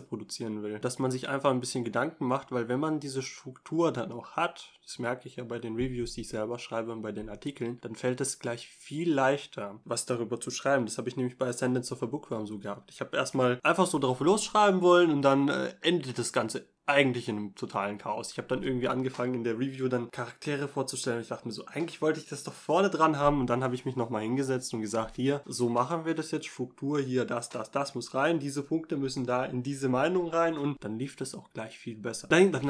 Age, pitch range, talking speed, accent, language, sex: 20-39, 120-145 Hz, 250 wpm, German, German, male